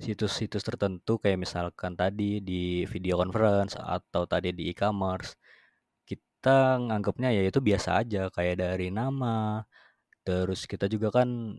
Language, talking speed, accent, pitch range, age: Indonesian, 130 wpm, native, 95-115 Hz, 20-39